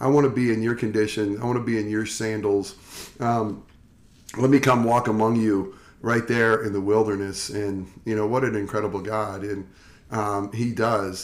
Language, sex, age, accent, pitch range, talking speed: English, male, 40-59, American, 105-130 Hz, 200 wpm